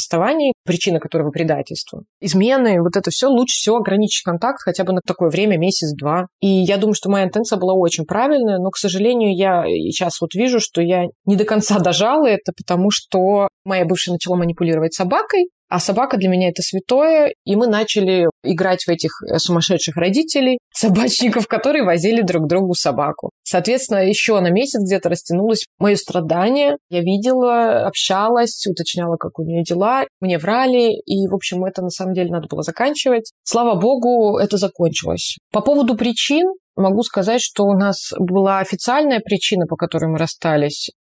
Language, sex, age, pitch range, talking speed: Russian, female, 20-39, 170-215 Hz, 165 wpm